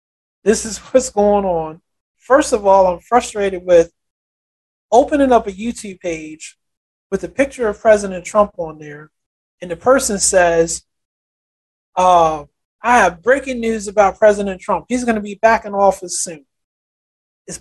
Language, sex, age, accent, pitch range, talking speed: English, male, 30-49, American, 180-245 Hz, 155 wpm